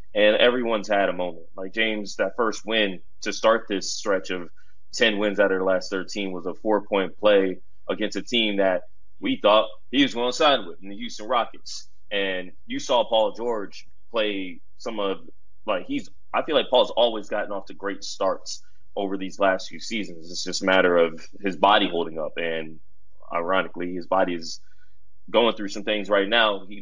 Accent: American